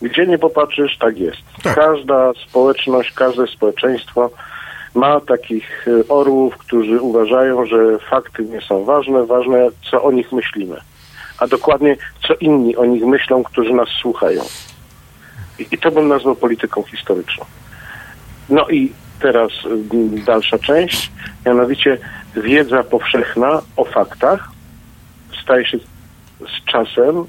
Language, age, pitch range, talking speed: Polish, 50-69, 115-145 Hz, 120 wpm